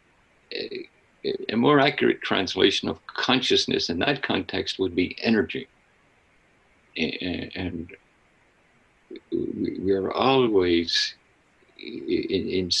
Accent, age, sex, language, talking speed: American, 60-79, male, English, 80 wpm